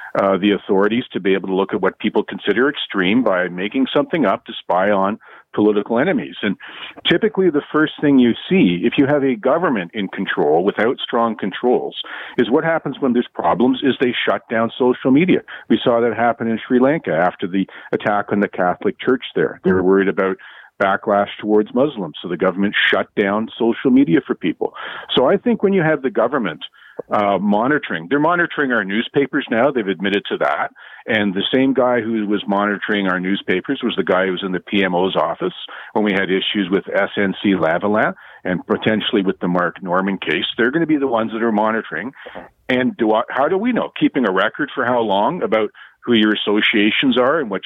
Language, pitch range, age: English, 100-135 Hz, 50-69